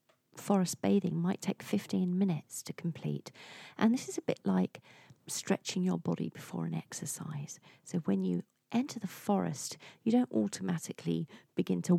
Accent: British